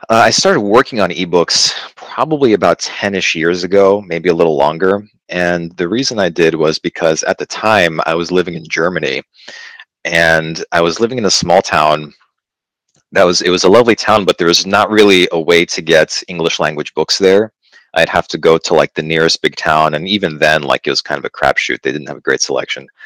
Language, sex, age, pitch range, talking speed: English, male, 30-49, 80-95 Hz, 220 wpm